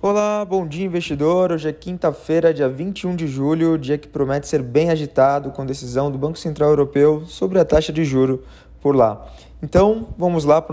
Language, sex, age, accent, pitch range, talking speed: Portuguese, male, 20-39, Brazilian, 135-165 Hz, 195 wpm